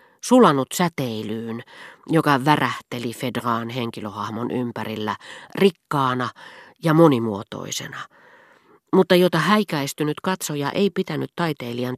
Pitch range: 120-175 Hz